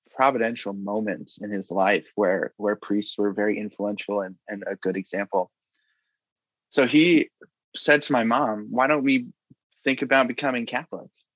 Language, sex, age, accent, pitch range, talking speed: English, male, 20-39, American, 105-125 Hz, 155 wpm